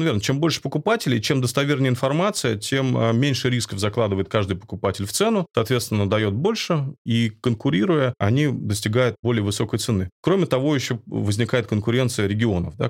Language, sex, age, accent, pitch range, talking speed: Russian, male, 20-39, native, 100-125 Hz, 150 wpm